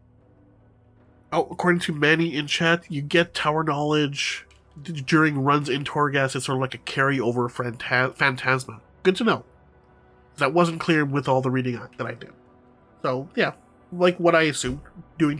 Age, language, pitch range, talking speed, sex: 30-49, English, 125-150 Hz, 160 wpm, male